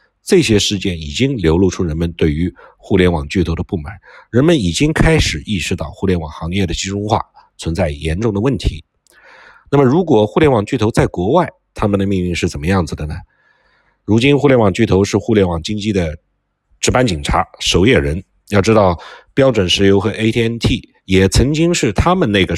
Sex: male